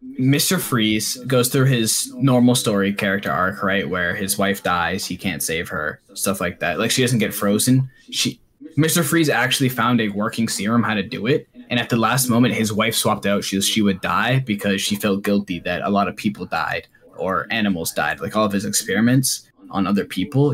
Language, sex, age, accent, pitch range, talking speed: English, male, 10-29, American, 105-130 Hz, 210 wpm